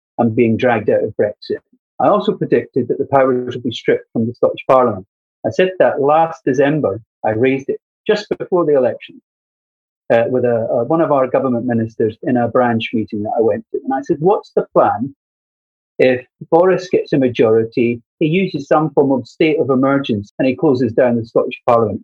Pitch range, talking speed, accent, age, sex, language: 125-185 Hz, 195 wpm, British, 40-59, male, English